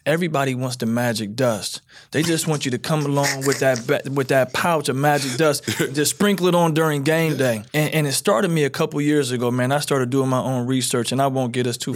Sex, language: male, English